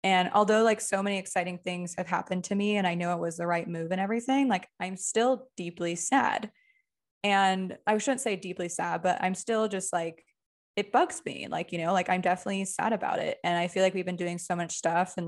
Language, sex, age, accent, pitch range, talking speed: English, female, 20-39, American, 175-205 Hz, 235 wpm